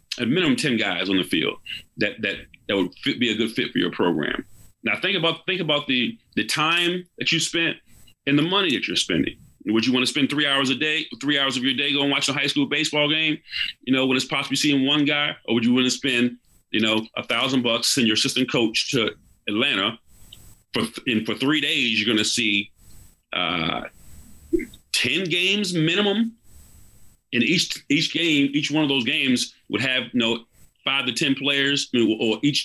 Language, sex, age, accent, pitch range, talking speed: English, male, 40-59, American, 110-150 Hz, 210 wpm